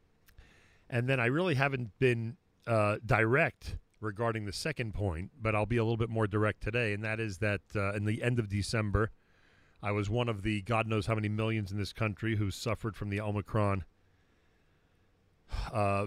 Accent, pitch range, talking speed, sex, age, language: American, 95-120 Hz, 185 wpm, male, 40-59, English